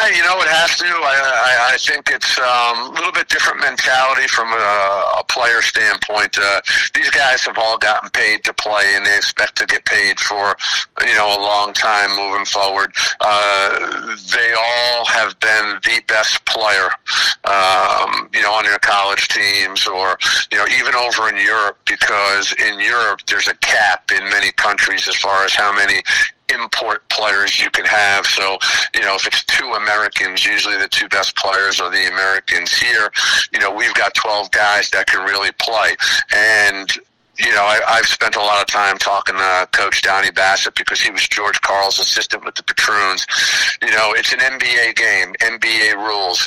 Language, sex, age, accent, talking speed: English, male, 50-69, American, 185 wpm